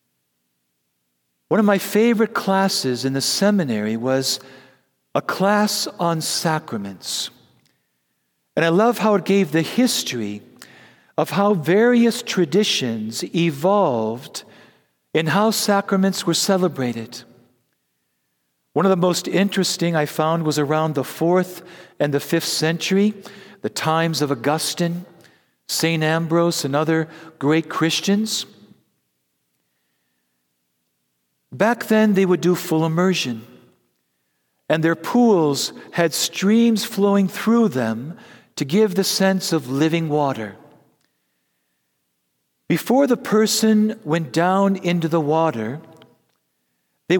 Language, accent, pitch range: English, American, 125-195 Hz